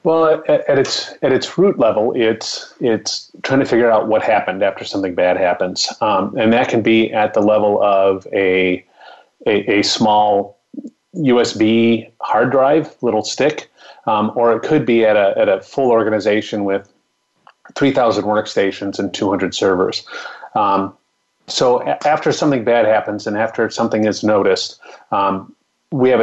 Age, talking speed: 30-49, 165 wpm